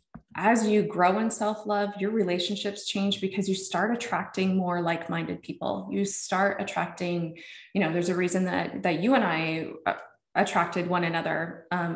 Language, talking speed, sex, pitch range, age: English, 160 wpm, female, 175-200 Hz, 20-39